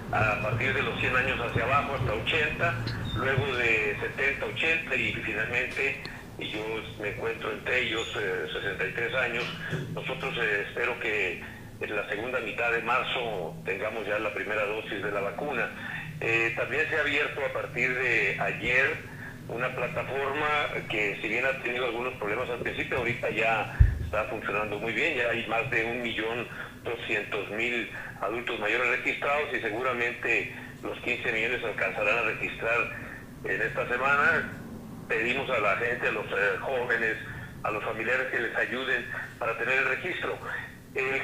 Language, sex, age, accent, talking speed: Spanish, male, 50-69, Mexican, 155 wpm